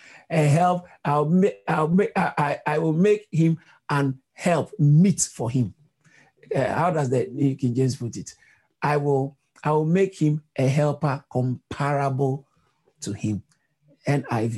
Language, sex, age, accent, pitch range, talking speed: English, male, 50-69, Nigerian, 145-180 Hz, 150 wpm